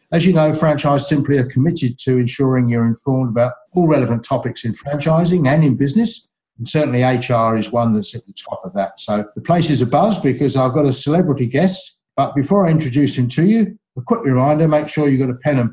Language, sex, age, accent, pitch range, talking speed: English, male, 60-79, British, 120-155 Hz, 230 wpm